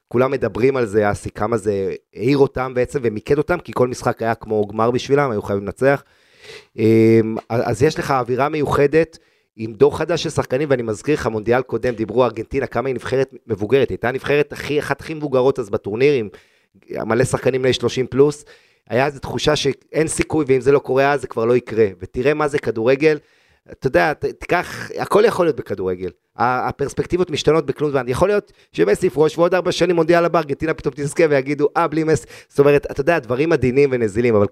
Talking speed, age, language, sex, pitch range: 190 wpm, 30-49, Hebrew, male, 115-150 Hz